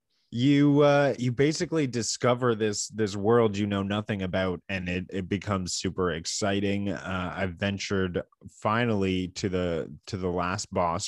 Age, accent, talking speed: 20-39, American, 150 wpm